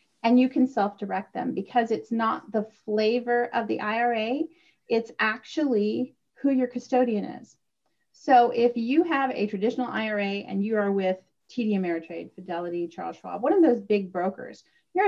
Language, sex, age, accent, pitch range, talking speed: English, female, 40-59, American, 190-245 Hz, 165 wpm